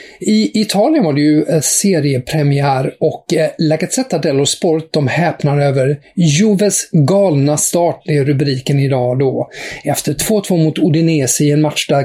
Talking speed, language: 145 wpm, English